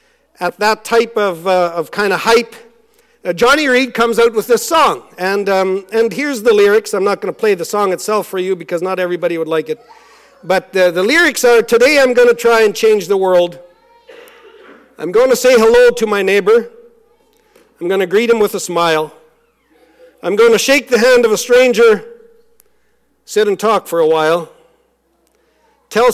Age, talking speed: 50-69, 195 wpm